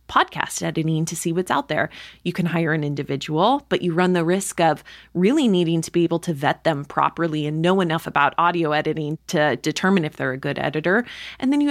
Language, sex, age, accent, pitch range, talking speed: English, female, 20-39, American, 160-215 Hz, 220 wpm